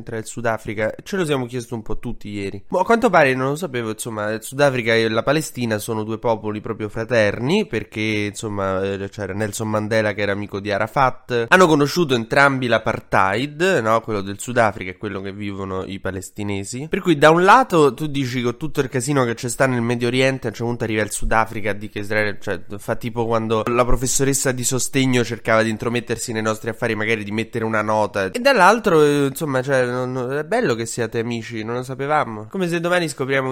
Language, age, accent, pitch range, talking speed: Italian, 20-39, native, 110-140 Hz, 215 wpm